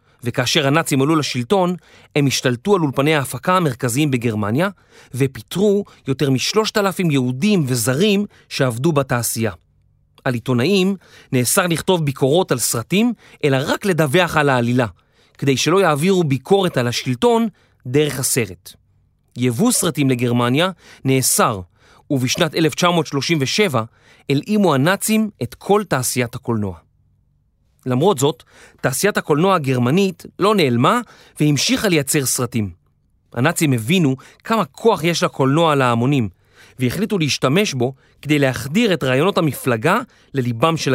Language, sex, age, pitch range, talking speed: Hebrew, male, 30-49, 125-175 Hz, 115 wpm